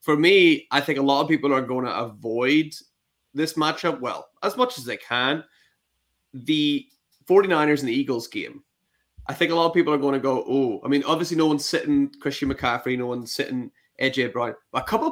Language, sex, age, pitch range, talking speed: English, male, 20-39, 115-150 Hz, 205 wpm